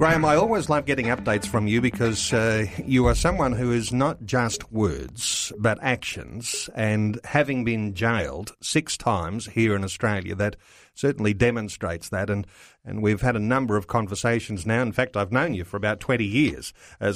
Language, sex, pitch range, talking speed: English, male, 105-130 Hz, 180 wpm